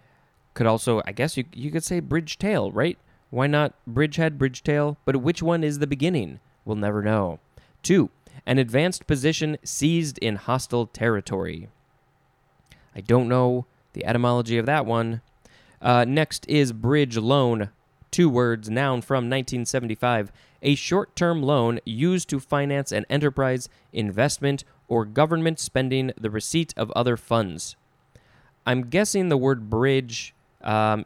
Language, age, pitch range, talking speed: English, 20-39, 115-150 Hz, 145 wpm